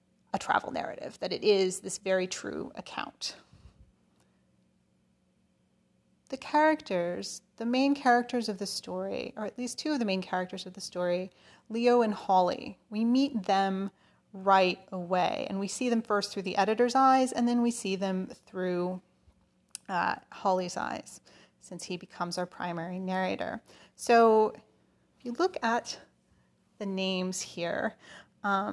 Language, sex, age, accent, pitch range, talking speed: English, female, 30-49, American, 185-230 Hz, 145 wpm